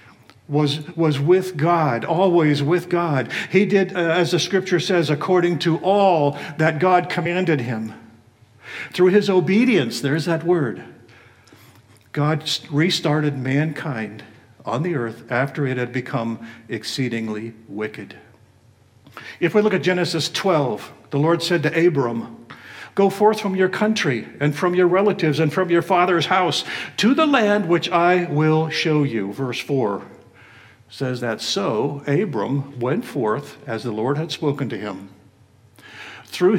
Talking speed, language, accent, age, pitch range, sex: 145 wpm, English, American, 50-69, 125-175 Hz, male